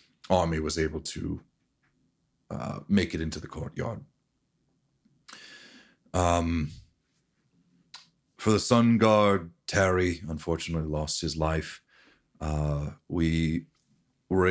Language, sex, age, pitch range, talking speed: English, male, 30-49, 80-85 Hz, 95 wpm